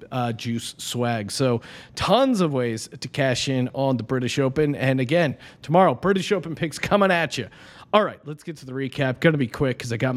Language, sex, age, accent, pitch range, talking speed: English, male, 30-49, American, 135-175 Hz, 210 wpm